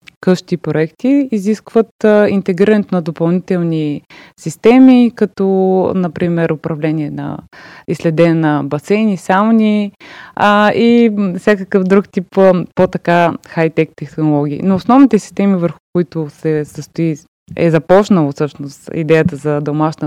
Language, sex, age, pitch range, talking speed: Bulgarian, female, 20-39, 165-205 Hz, 110 wpm